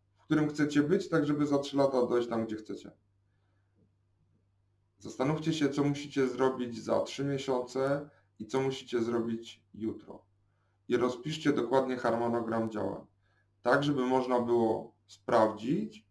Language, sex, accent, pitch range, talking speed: Polish, male, native, 100-130 Hz, 135 wpm